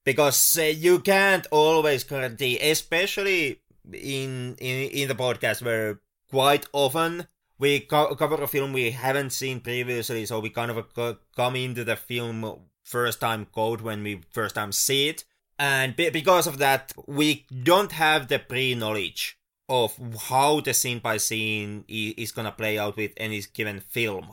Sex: male